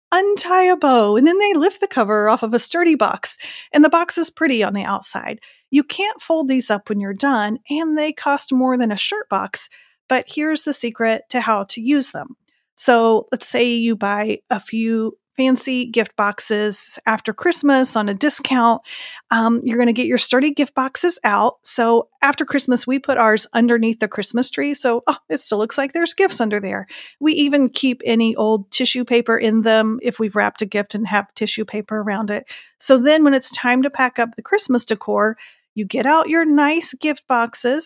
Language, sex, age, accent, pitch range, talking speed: English, female, 40-59, American, 225-285 Hz, 205 wpm